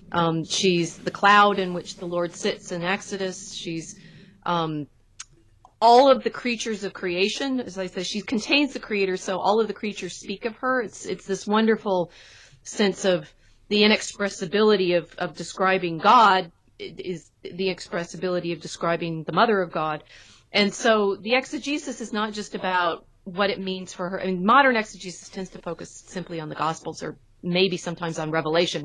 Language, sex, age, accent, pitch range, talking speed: English, female, 30-49, American, 170-210 Hz, 175 wpm